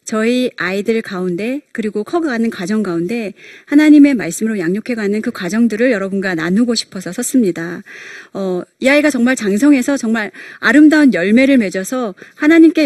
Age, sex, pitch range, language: 30-49, female, 195-285 Hz, Korean